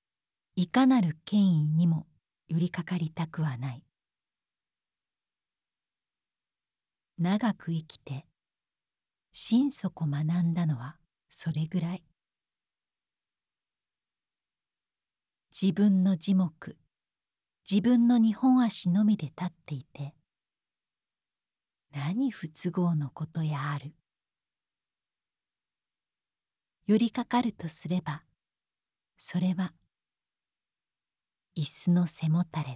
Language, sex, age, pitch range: Japanese, female, 40-59, 150-195 Hz